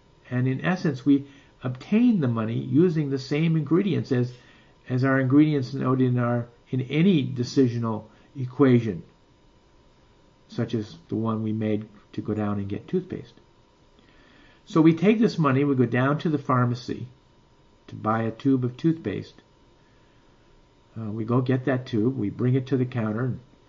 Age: 50-69